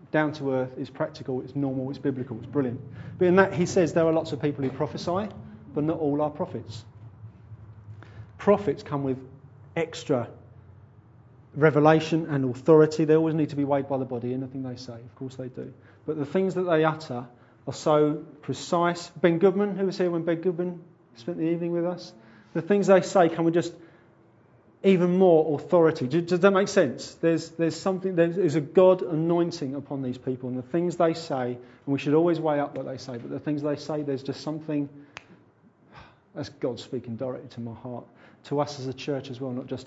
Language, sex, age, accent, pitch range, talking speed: English, male, 40-59, British, 130-170 Hz, 205 wpm